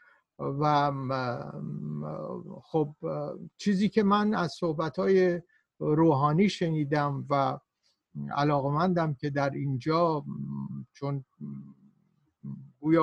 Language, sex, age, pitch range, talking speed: Persian, male, 60-79, 140-175 Hz, 75 wpm